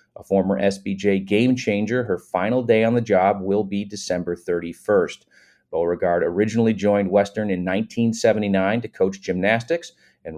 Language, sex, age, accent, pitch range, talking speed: English, male, 40-59, American, 95-125 Hz, 145 wpm